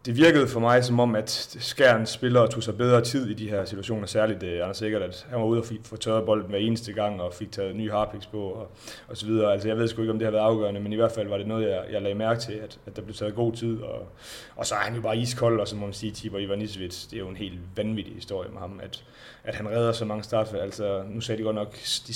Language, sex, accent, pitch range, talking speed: Danish, male, native, 100-115 Hz, 295 wpm